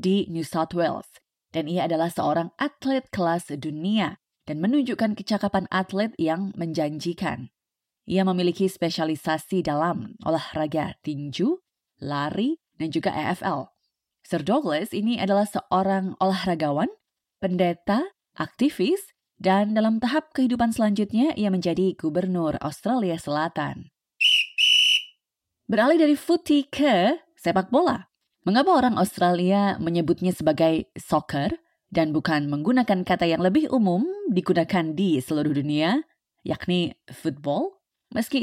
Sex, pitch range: female, 165-235 Hz